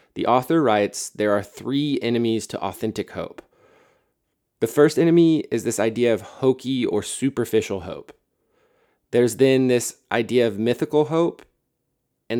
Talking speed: 140 wpm